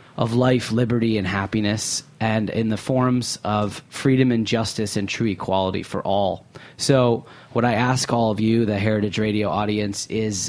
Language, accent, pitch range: English, American, 105-120 Hz